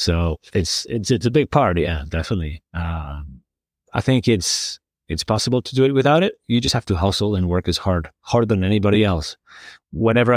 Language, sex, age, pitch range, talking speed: English, male, 30-49, 85-115 Hz, 195 wpm